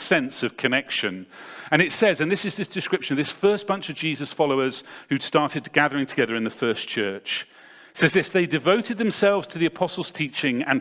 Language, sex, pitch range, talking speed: English, male, 150-195 Hz, 195 wpm